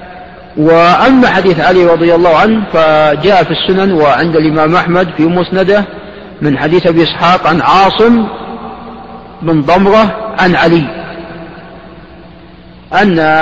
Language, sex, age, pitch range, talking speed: Arabic, male, 50-69, 160-195 Hz, 110 wpm